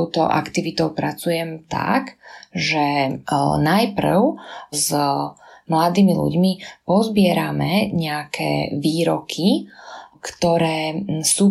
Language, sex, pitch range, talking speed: Slovak, female, 160-195 Hz, 75 wpm